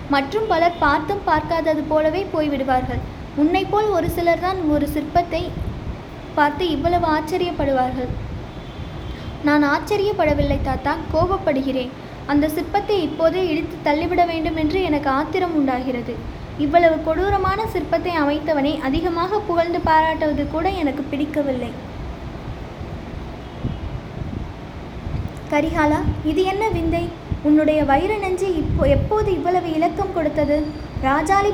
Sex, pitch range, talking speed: female, 295-360 Hz, 100 wpm